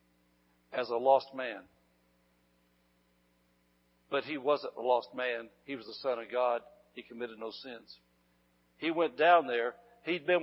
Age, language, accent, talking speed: 60-79, English, American, 150 wpm